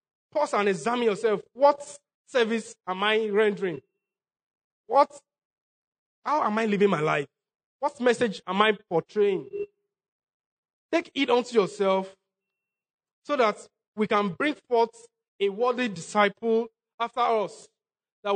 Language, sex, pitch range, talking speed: English, male, 195-240 Hz, 120 wpm